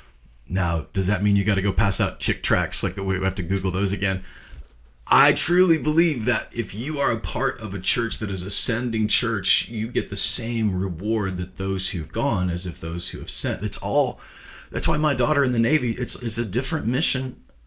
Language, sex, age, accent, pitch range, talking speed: English, male, 30-49, American, 90-120 Hz, 230 wpm